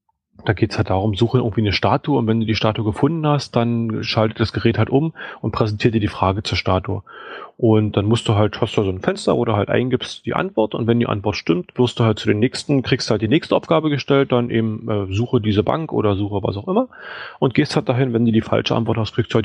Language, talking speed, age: German, 260 wpm, 30-49